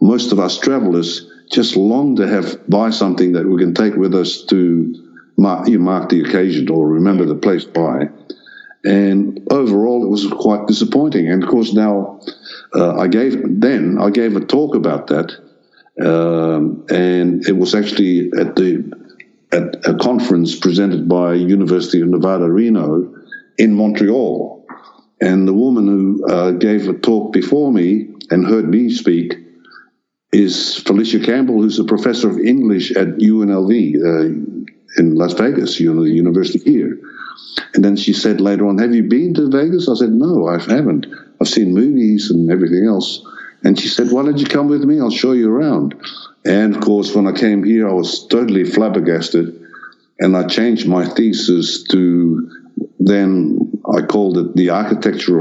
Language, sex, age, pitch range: English, male, 60-79, 90-110 Hz